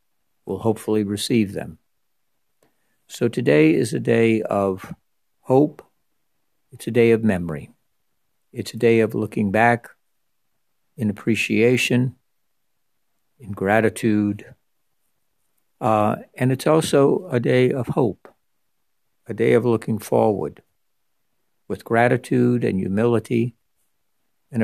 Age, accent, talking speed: 60-79, American, 105 wpm